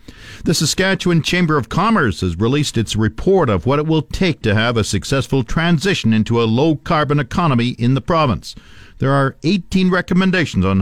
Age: 50-69